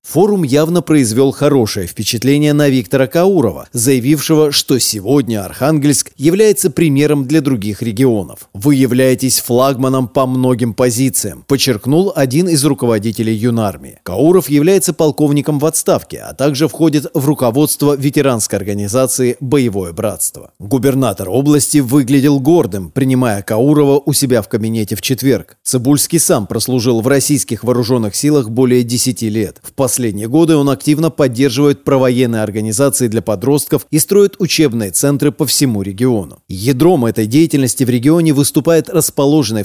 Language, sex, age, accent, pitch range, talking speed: Russian, male, 30-49, native, 120-150 Hz, 135 wpm